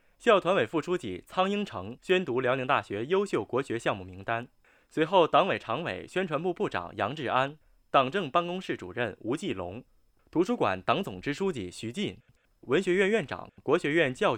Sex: male